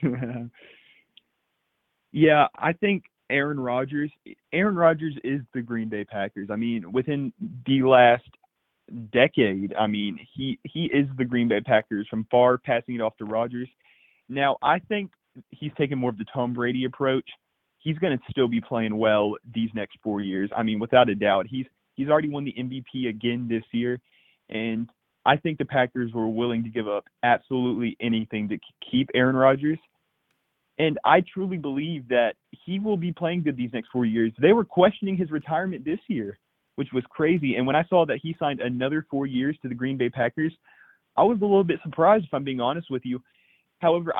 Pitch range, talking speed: 120-155 Hz, 190 wpm